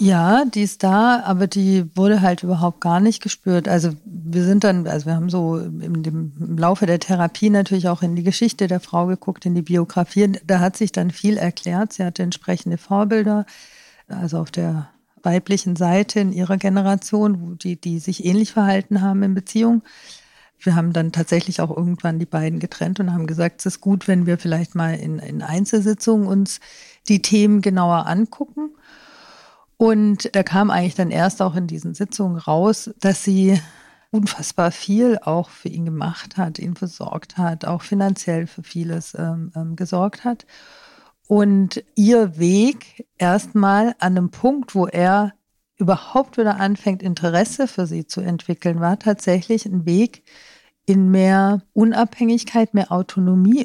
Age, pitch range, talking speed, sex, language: 50-69, 175-210 Hz, 165 wpm, female, German